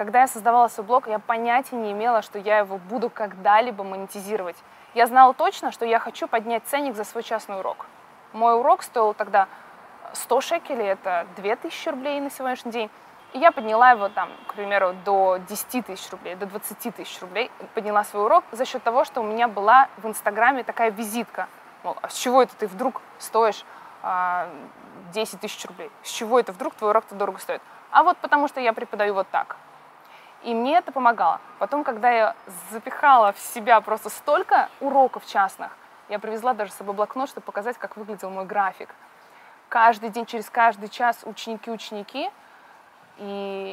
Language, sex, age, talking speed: Russian, female, 20-39, 175 wpm